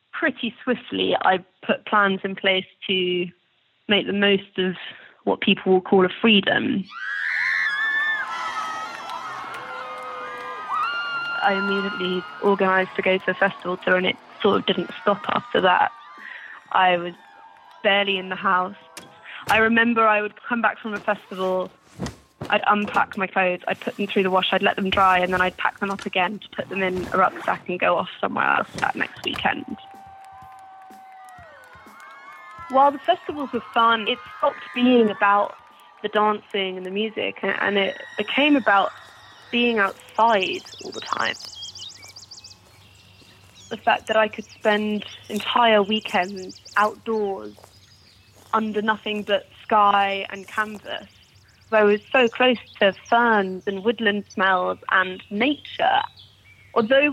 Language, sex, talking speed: English, female, 140 wpm